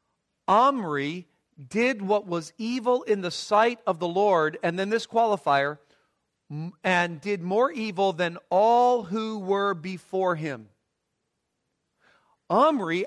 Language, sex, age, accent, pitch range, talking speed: English, male, 50-69, American, 145-205 Hz, 120 wpm